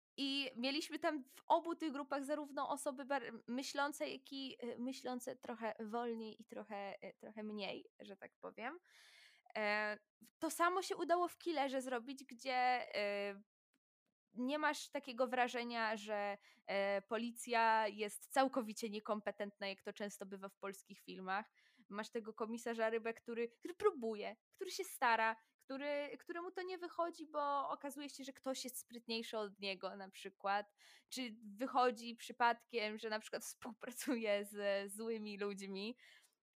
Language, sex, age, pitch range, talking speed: Polish, female, 20-39, 215-280 Hz, 135 wpm